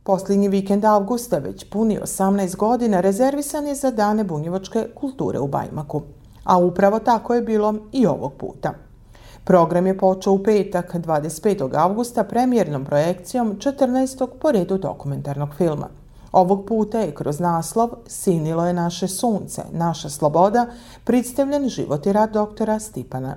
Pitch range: 165-220 Hz